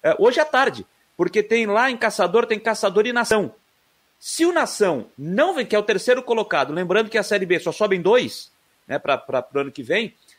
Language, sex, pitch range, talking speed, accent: Portuguese, male, 195-245 Hz, 215 wpm, Brazilian